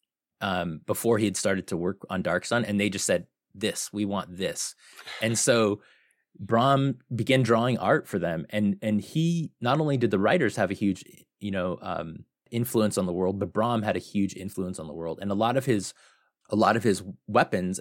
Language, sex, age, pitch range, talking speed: English, male, 20-39, 100-115 Hz, 210 wpm